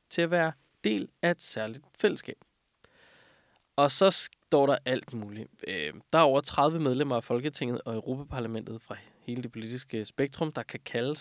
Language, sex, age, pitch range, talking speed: Danish, male, 20-39, 125-170 Hz, 165 wpm